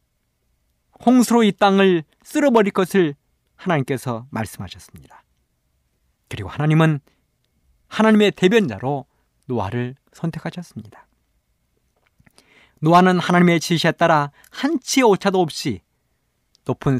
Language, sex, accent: Korean, male, native